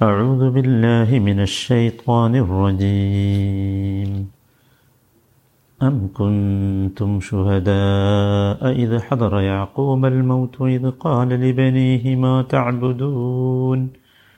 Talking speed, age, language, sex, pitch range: 70 wpm, 50-69, Malayalam, male, 100-130 Hz